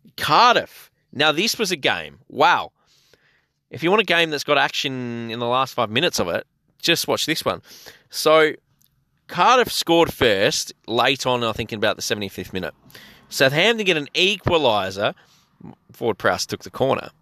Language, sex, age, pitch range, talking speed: English, male, 20-39, 130-160 Hz, 165 wpm